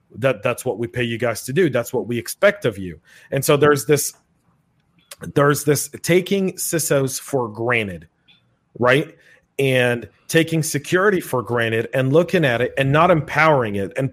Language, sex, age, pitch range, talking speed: English, male, 30-49, 125-155 Hz, 170 wpm